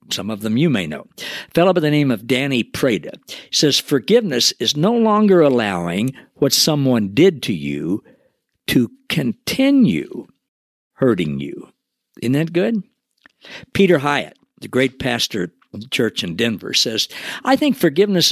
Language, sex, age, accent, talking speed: English, male, 60-79, American, 150 wpm